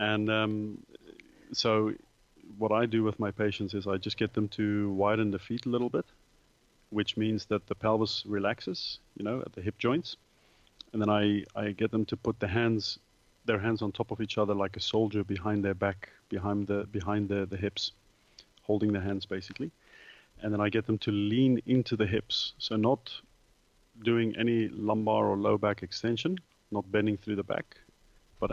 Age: 30-49